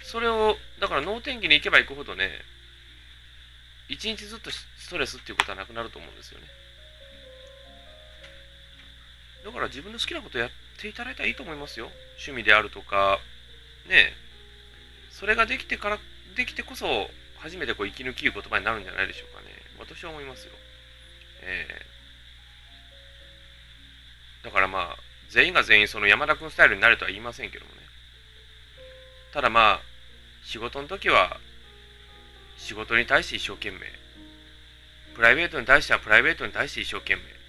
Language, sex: Japanese, male